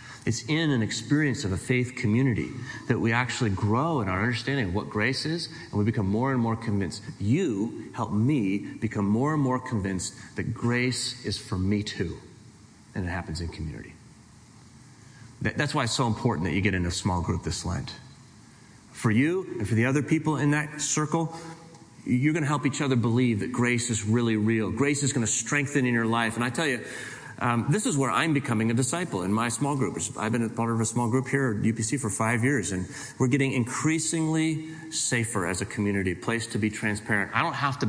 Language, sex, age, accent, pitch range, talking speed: English, male, 30-49, American, 110-135 Hz, 215 wpm